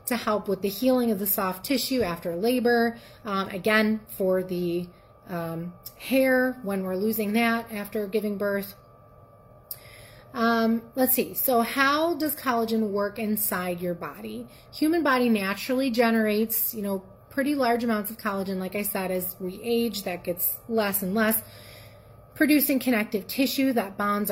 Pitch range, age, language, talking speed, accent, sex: 190-240 Hz, 30-49, English, 155 wpm, American, female